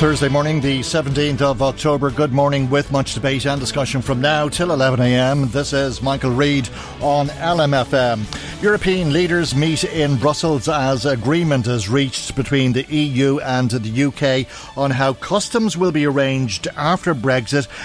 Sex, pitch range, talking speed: male, 115-140 Hz, 155 wpm